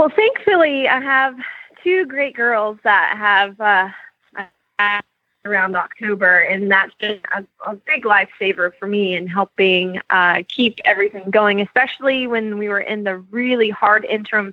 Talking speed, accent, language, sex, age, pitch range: 150 wpm, American, English, female, 20-39, 195-245 Hz